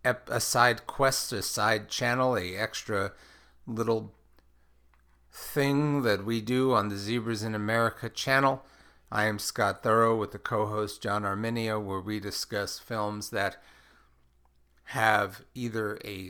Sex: male